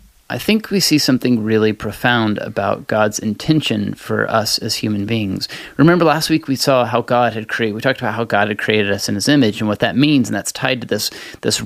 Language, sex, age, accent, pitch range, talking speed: English, male, 30-49, American, 110-140 Hz, 230 wpm